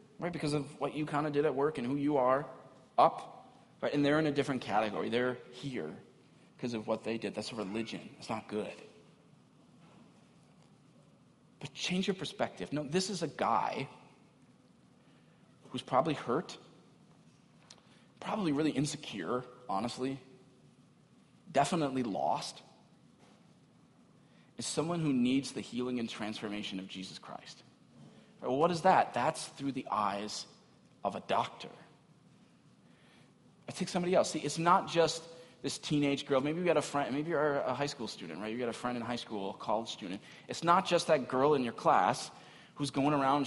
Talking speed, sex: 165 wpm, male